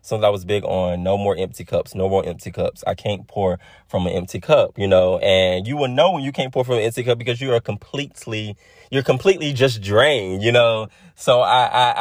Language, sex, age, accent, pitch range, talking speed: English, male, 20-39, American, 95-115 Hz, 235 wpm